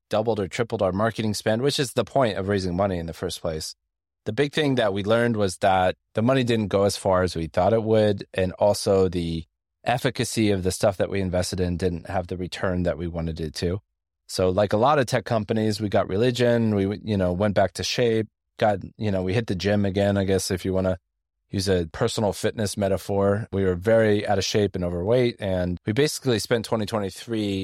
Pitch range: 90-110 Hz